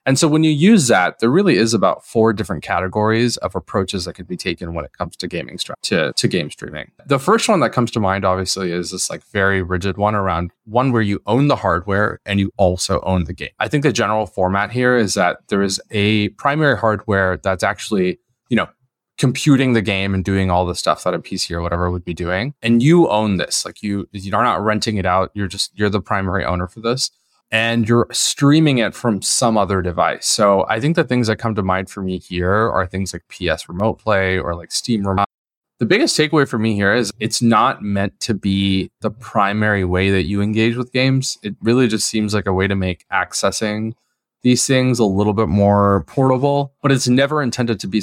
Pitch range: 95-120 Hz